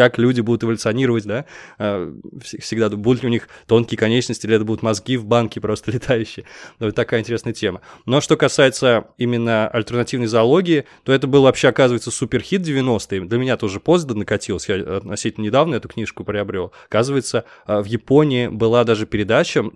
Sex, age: male, 20-39